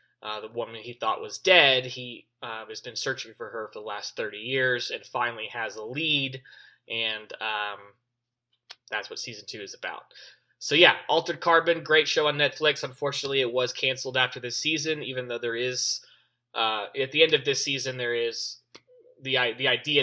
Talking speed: 190 wpm